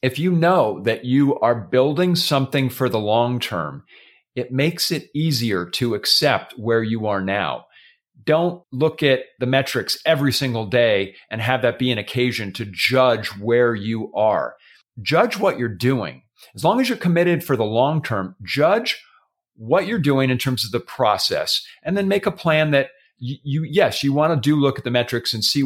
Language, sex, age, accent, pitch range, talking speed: English, male, 40-59, American, 115-145 Hz, 190 wpm